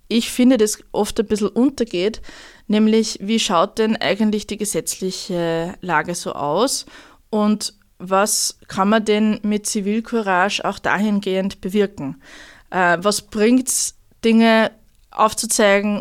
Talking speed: 120 wpm